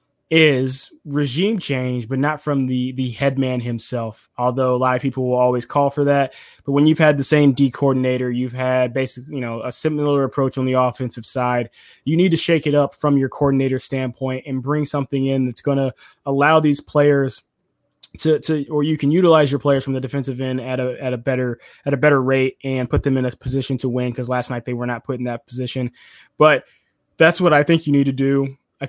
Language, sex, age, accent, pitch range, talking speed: English, male, 20-39, American, 130-150 Hz, 225 wpm